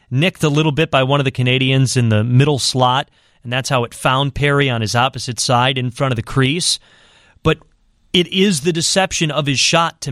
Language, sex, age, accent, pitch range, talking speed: English, male, 30-49, American, 120-155 Hz, 220 wpm